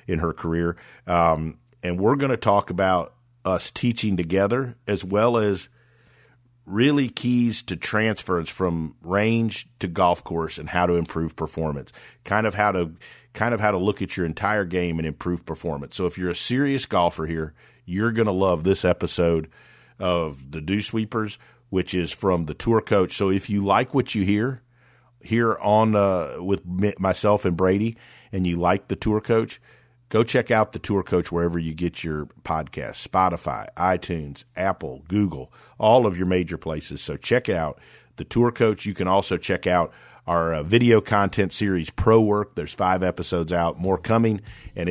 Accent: American